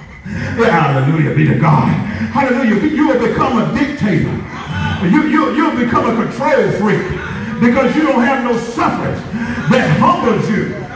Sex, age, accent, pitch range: male, 50-69, American, 235-315 Hz